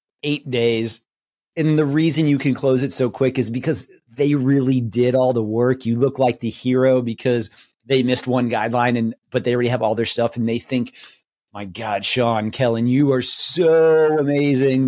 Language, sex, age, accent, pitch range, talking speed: English, male, 30-49, American, 115-145 Hz, 195 wpm